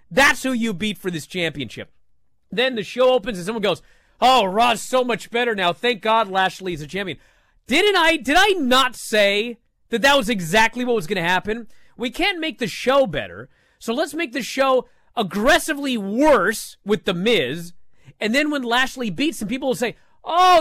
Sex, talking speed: male, 200 wpm